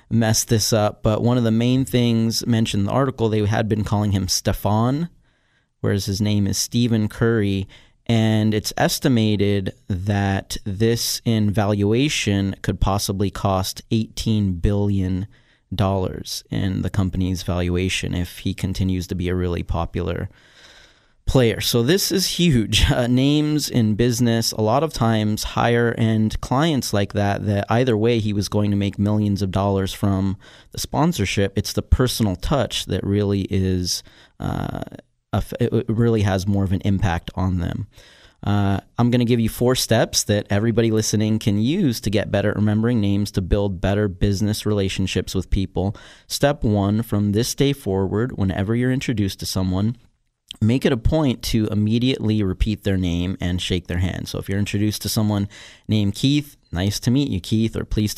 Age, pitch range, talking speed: 30-49, 100-115 Hz, 170 wpm